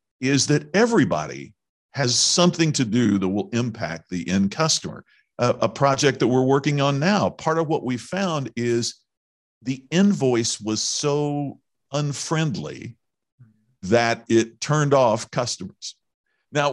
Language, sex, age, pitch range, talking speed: English, male, 50-69, 115-160 Hz, 135 wpm